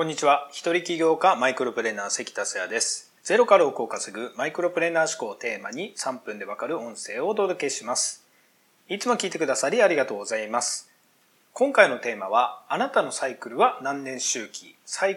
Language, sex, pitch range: Japanese, male, 150-235 Hz